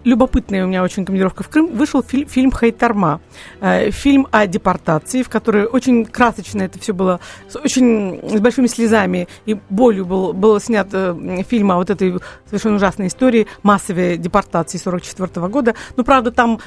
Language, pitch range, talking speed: Russian, 195-250 Hz, 175 wpm